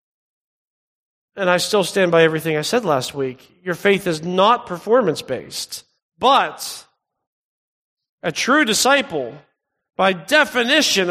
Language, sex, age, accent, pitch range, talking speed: English, male, 40-59, American, 195-270 Hz, 115 wpm